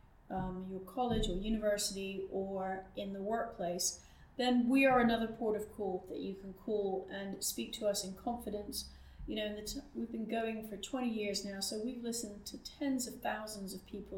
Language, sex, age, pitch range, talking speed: English, female, 30-49, 190-225 Hz, 185 wpm